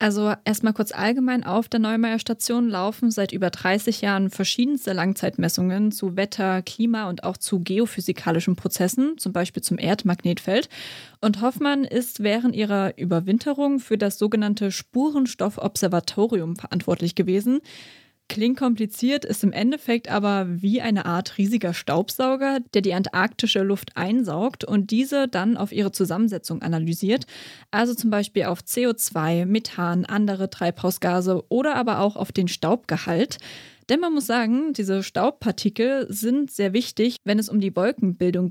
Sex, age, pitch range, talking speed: female, 20-39, 190-235 Hz, 140 wpm